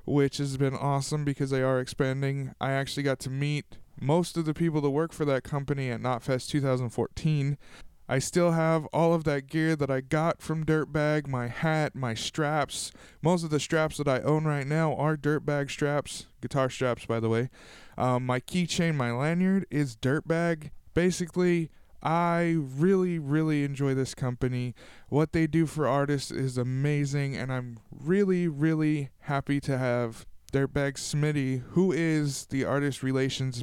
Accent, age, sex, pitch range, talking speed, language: American, 20-39, male, 125-155 Hz, 165 wpm, English